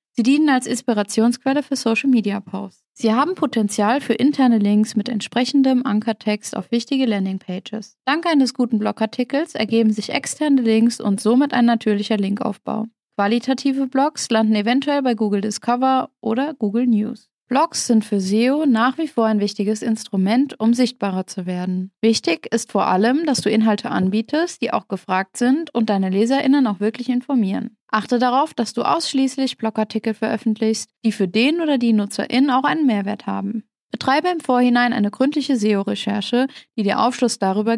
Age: 20-39